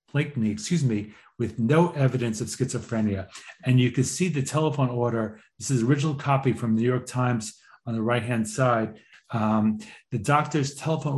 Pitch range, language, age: 110-135 Hz, English, 40-59